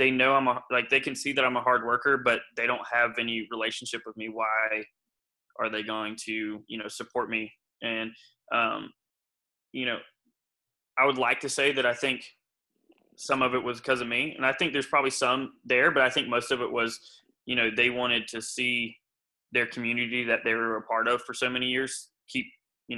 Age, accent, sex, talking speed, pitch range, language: 20-39, American, male, 215 wpm, 115-135 Hz, English